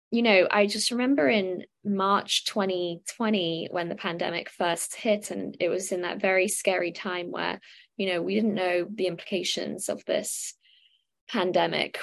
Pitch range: 170-200 Hz